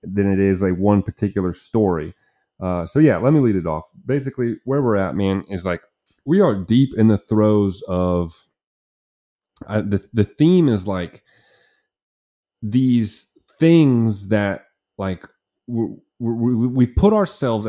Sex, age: male, 30-49